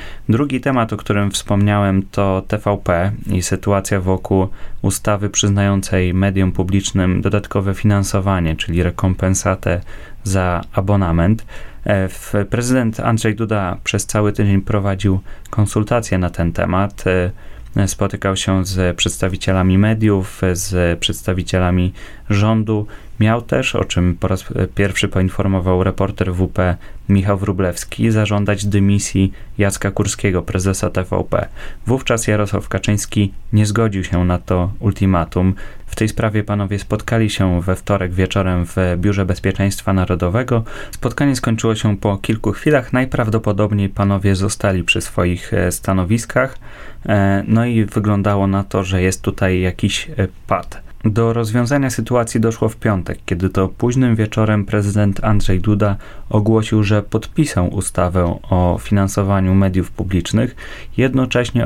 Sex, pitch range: male, 95-110 Hz